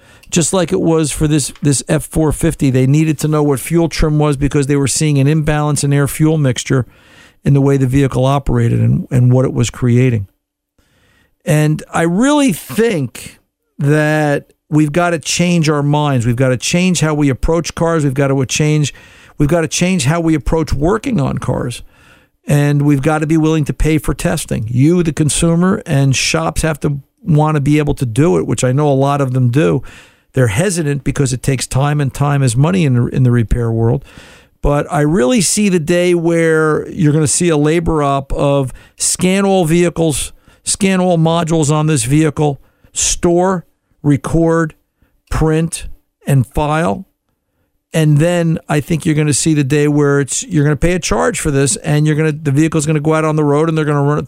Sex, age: male, 50-69